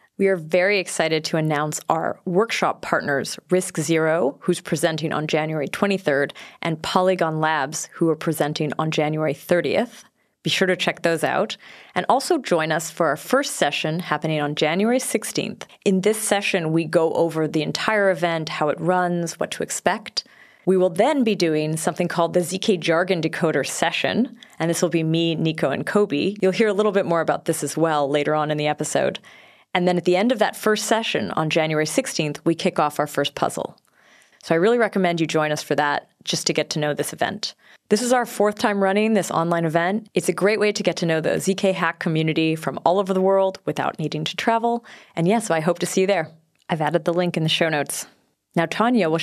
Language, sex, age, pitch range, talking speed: English, female, 30-49, 160-195 Hz, 215 wpm